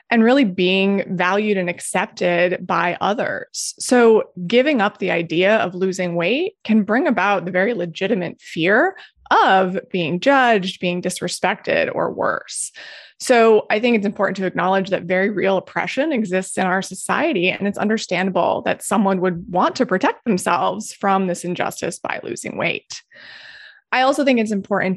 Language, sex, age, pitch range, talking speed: English, female, 20-39, 185-220 Hz, 160 wpm